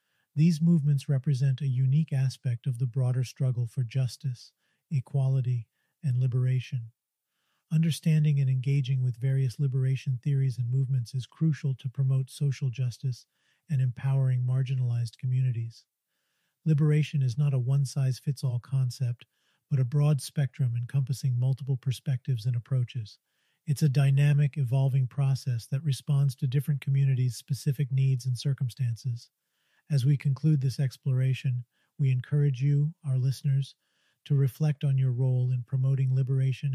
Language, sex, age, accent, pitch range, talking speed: English, male, 40-59, American, 130-145 Hz, 130 wpm